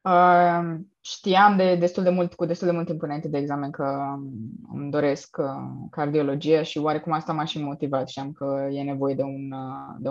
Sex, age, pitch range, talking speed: female, 20-39, 145-180 Hz, 180 wpm